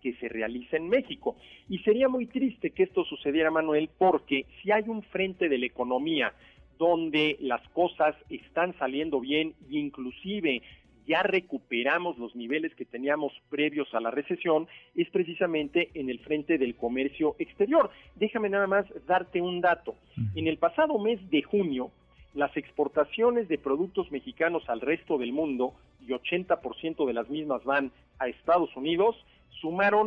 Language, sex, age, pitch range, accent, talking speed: Spanish, male, 50-69, 140-185 Hz, Mexican, 155 wpm